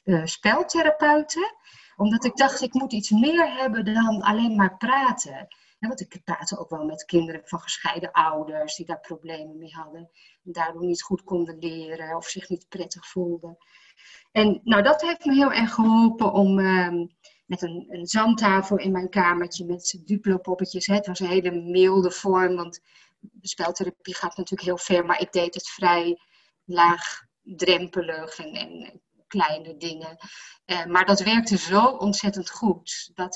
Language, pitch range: Dutch, 175-220 Hz